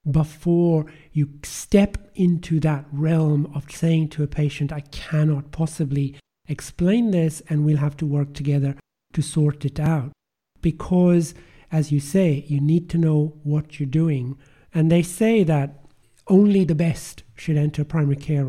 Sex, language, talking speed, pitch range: male, English, 155 wpm, 145-165 Hz